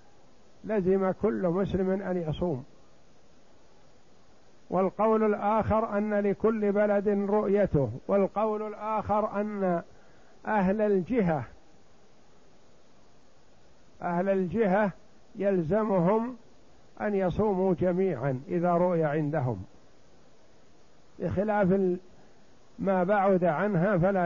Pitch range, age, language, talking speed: 175-205 Hz, 60-79, Arabic, 75 wpm